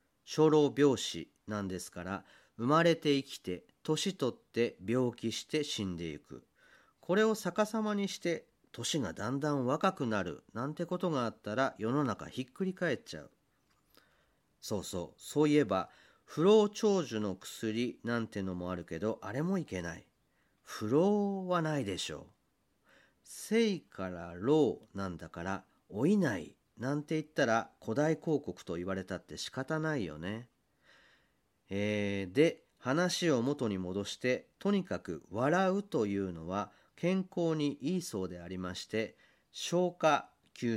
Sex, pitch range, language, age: male, 100-165 Hz, Japanese, 40-59